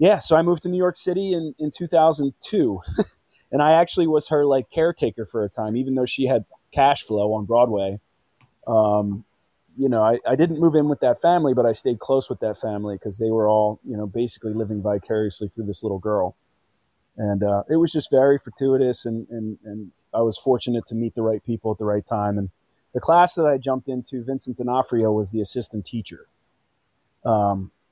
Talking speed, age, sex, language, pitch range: 205 wpm, 30-49, male, English, 105-140 Hz